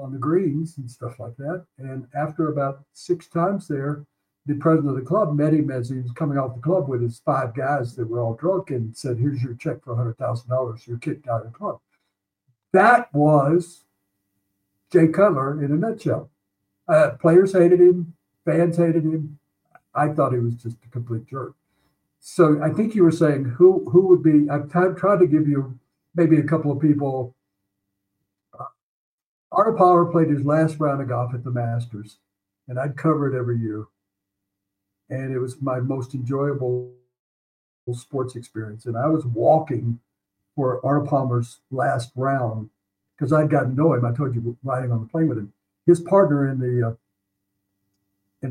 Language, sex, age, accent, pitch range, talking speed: English, male, 60-79, American, 115-150 Hz, 180 wpm